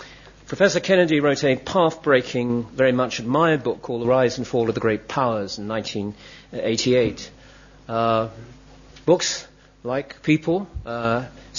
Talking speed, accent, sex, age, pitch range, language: 130 wpm, British, male, 40-59, 115-140 Hz, English